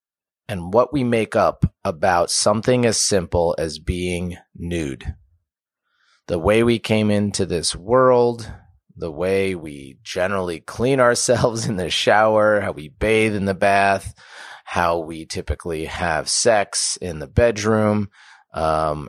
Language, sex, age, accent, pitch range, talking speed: English, male, 30-49, American, 85-115 Hz, 135 wpm